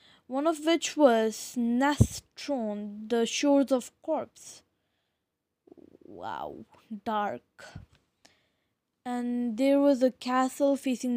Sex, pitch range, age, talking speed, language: female, 230-290 Hz, 20-39, 90 wpm, English